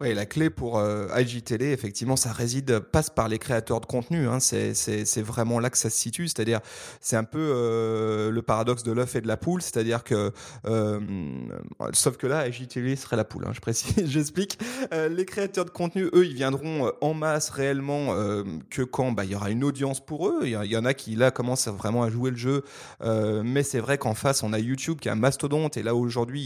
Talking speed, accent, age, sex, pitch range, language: 235 wpm, French, 30-49, male, 115-145 Hz, French